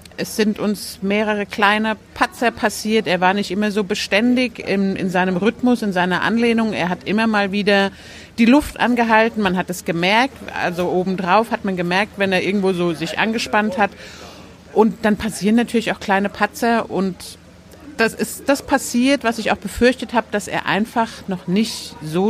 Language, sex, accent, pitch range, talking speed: German, female, German, 185-230 Hz, 180 wpm